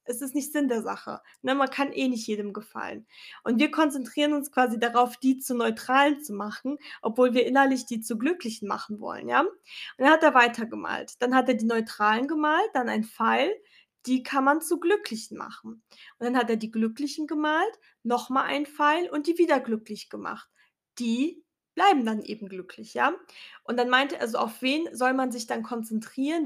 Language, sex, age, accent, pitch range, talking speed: German, female, 10-29, German, 240-290 Hz, 195 wpm